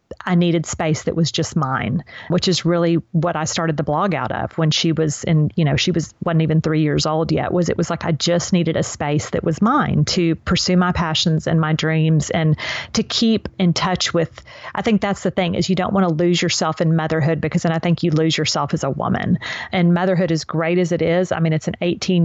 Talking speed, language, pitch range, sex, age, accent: 250 wpm, English, 160-195 Hz, female, 40-59, American